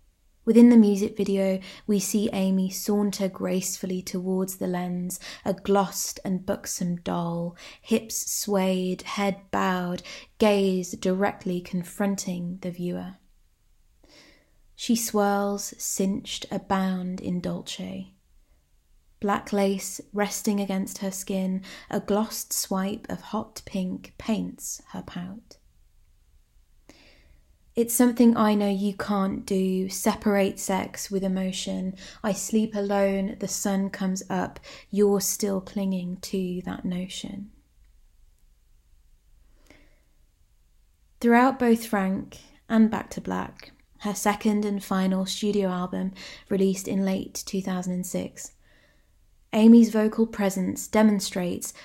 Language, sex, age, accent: English, female, 20-39, British